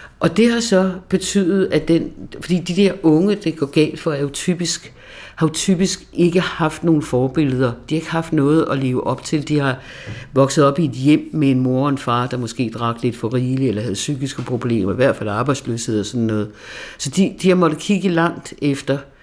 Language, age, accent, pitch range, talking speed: Danish, 60-79, native, 115-155 Hz, 215 wpm